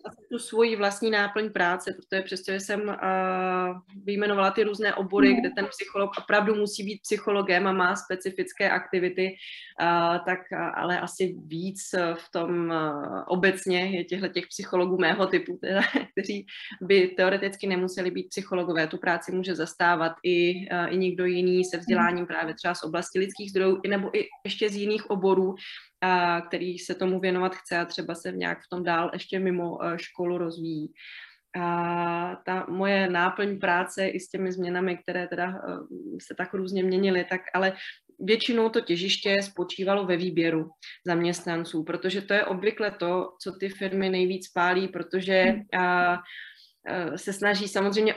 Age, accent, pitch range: 20-39, native, 175-195 Hz